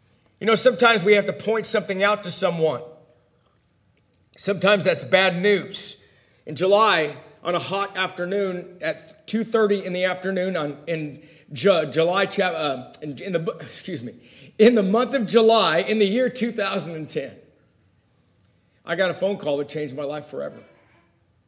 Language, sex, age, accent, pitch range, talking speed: English, male, 50-69, American, 140-195 Hz, 145 wpm